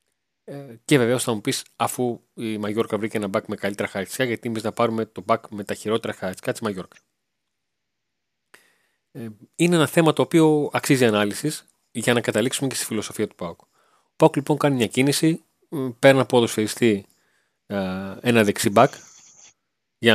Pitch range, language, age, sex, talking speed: 100-120 Hz, Greek, 30-49, male, 165 wpm